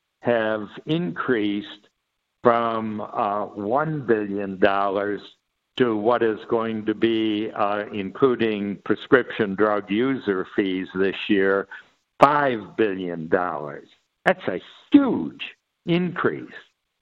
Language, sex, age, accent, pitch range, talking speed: English, male, 60-79, American, 105-140 Hz, 90 wpm